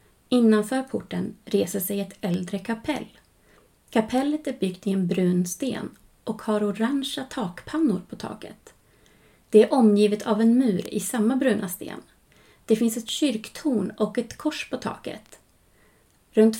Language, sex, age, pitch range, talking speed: Swedish, female, 30-49, 200-240 Hz, 145 wpm